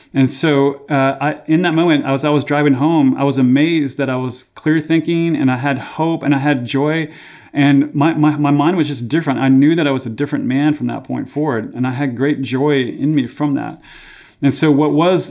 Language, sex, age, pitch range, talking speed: English, male, 30-49, 135-160 Hz, 240 wpm